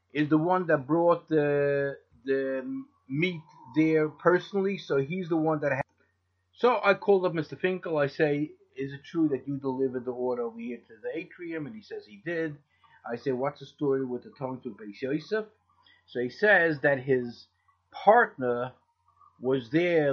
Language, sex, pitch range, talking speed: English, male, 135-185 Hz, 180 wpm